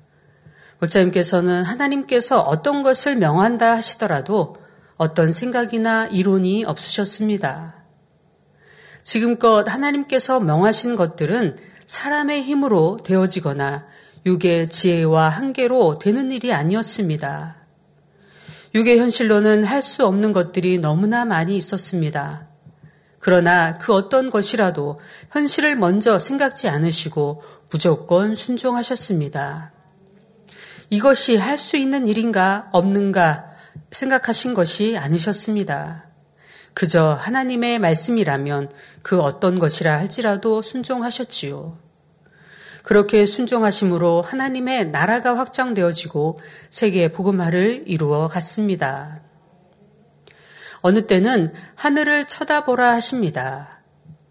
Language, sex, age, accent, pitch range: Korean, female, 40-59, native, 165-235 Hz